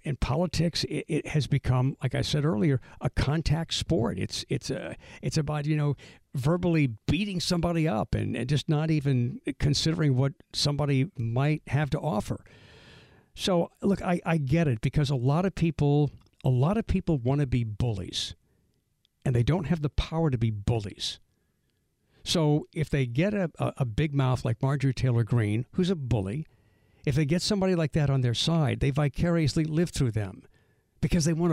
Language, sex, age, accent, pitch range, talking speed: English, male, 60-79, American, 125-155 Hz, 180 wpm